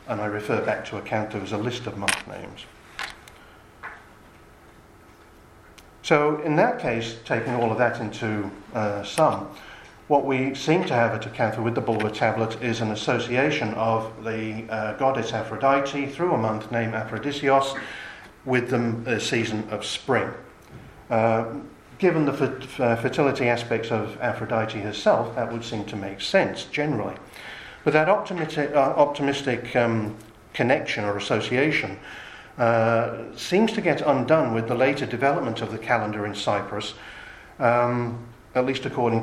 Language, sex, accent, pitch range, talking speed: English, male, British, 110-135 Hz, 150 wpm